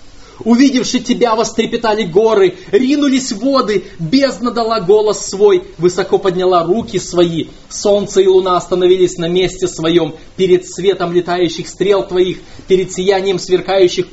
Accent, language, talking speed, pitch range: native, Russian, 125 wpm, 130-200 Hz